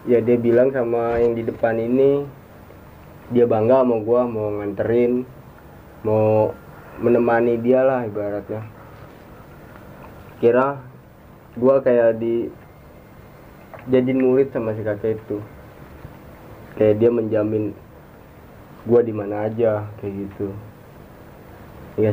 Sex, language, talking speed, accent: male, Indonesian, 105 wpm, native